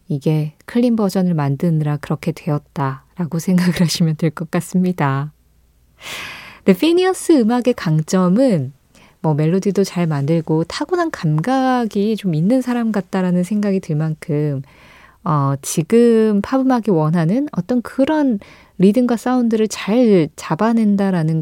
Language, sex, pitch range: Korean, female, 160-230 Hz